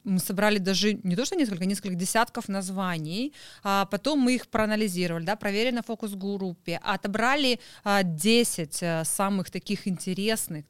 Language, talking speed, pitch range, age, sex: Russian, 140 wpm, 185-235 Hz, 30-49, female